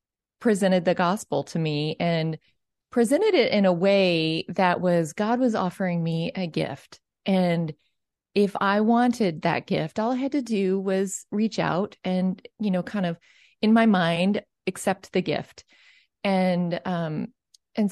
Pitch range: 180-230 Hz